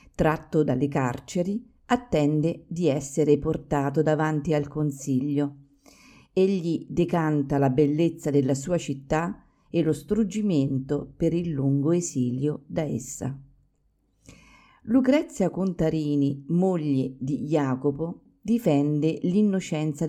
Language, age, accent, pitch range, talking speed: Italian, 50-69, native, 140-180 Hz, 100 wpm